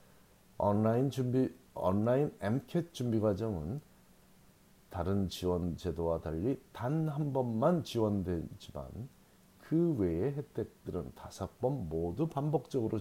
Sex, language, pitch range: male, Korean, 90-125 Hz